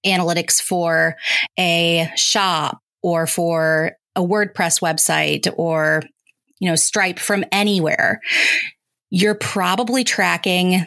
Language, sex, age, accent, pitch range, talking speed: English, female, 30-49, American, 165-195 Hz, 100 wpm